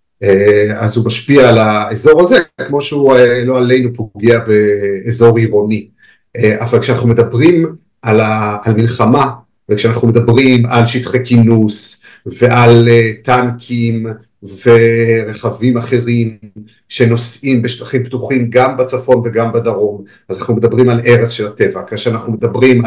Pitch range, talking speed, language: 110-125 Hz, 130 wpm, Hebrew